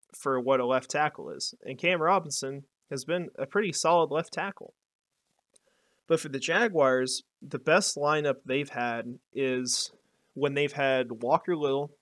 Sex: male